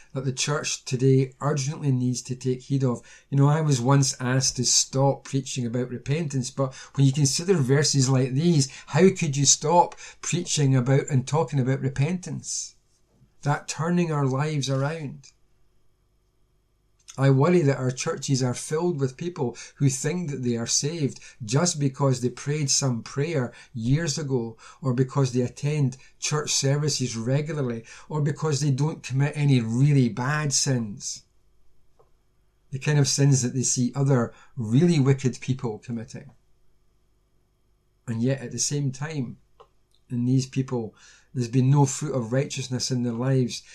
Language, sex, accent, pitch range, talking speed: English, male, British, 125-140 Hz, 155 wpm